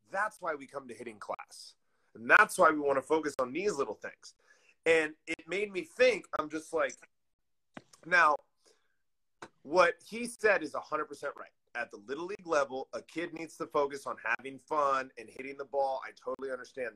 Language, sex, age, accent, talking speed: English, male, 30-49, American, 190 wpm